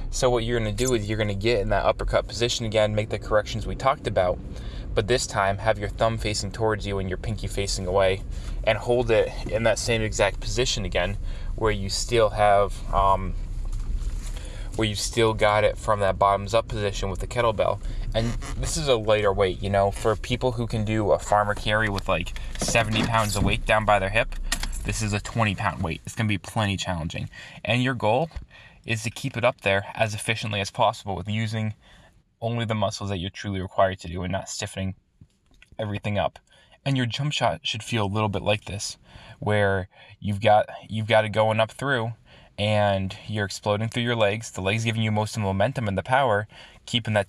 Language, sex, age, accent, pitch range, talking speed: English, male, 20-39, American, 100-115 Hz, 210 wpm